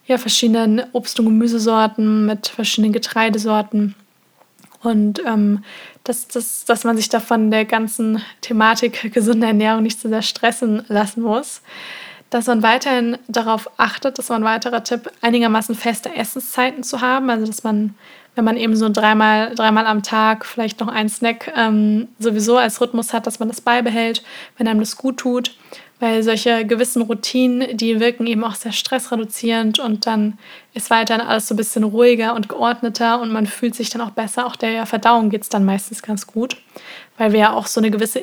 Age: 20-39